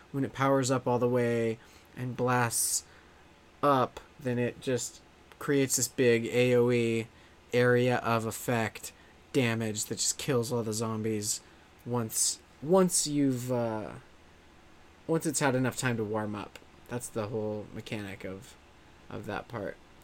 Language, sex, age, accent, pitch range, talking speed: English, male, 20-39, American, 110-135 Hz, 140 wpm